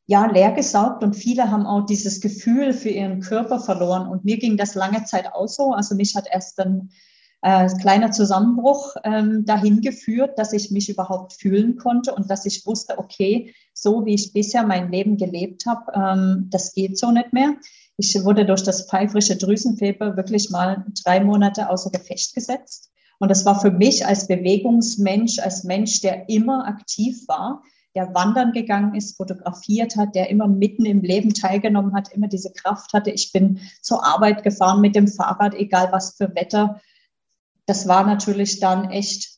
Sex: female